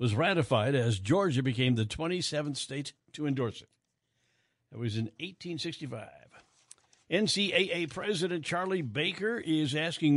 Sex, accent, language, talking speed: male, American, English, 125 wpm